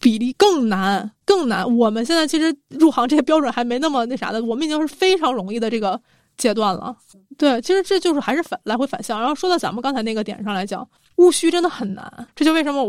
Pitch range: 215-290 Hz